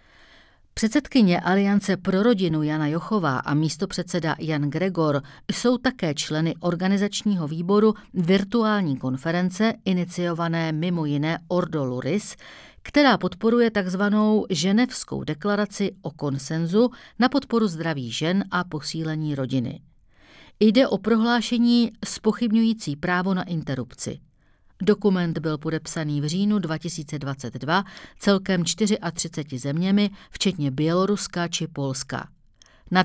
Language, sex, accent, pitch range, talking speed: Czech, female, native, 155-205 Hz, 105 wpm